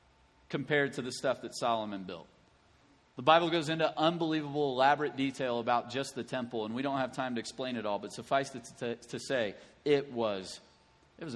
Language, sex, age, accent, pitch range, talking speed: English, male, 40-59, American, 130-175 Hz, 190 wpm